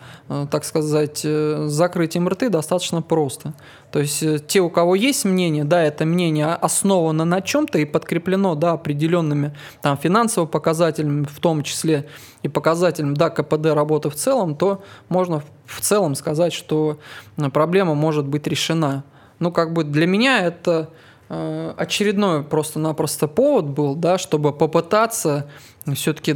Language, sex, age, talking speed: English, male, 20-39, 135 wpm